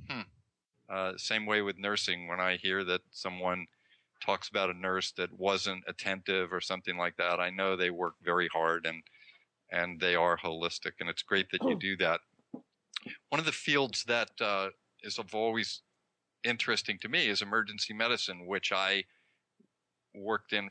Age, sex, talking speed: 50-69, male, 170 wpm